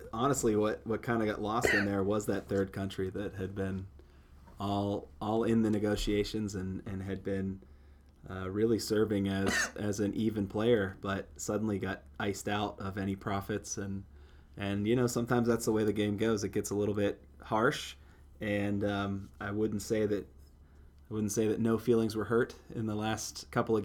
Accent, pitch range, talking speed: American, 95-115 Hz, 195 wpm